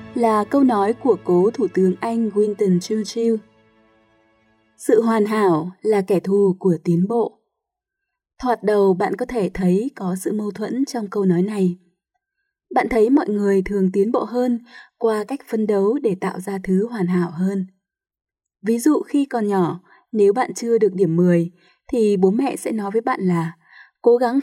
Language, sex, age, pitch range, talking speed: Vietnamese, female, 20-39, 185-240 Hz, 180 wpm